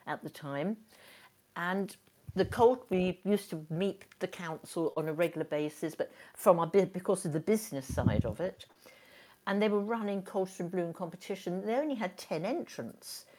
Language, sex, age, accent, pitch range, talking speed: English, female, 60-79, British, 160-200 Hz, 180 wpm